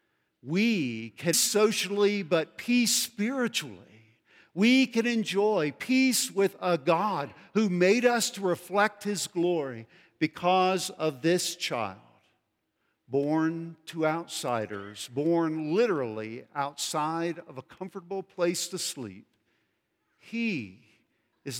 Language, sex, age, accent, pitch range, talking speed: English, male, 50-69, American, 140-185 Hz, 105 wpm